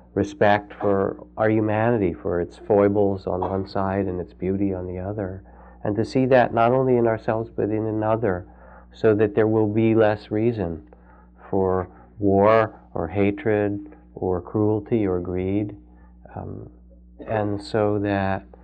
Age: 50-69